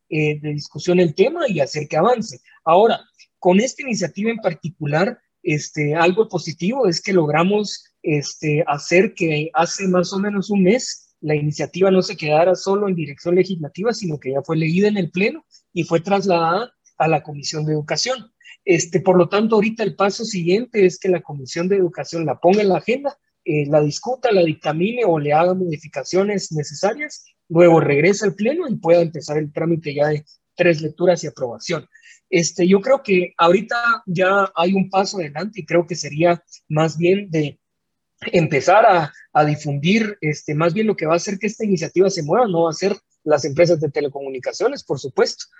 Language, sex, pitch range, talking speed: Spanish, male, 155-195 Hz, 190 wpm